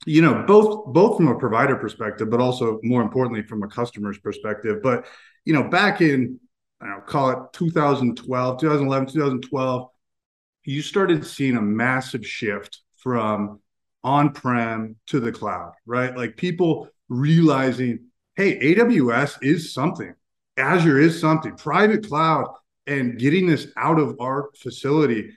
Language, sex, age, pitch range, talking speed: English, male, 30-49, 120-150 Hz, 140 wpm